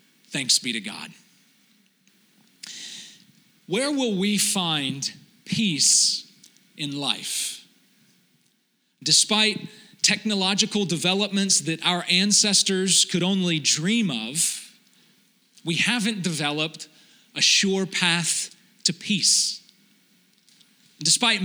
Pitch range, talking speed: 175-215 Hz, 85 wpm